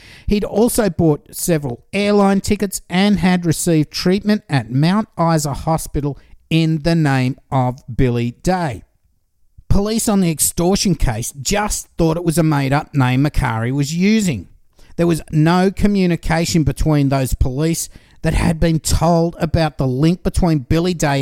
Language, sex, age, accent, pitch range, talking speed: English, male, 50-69, Australian, 130-180 Hz, 145 wpm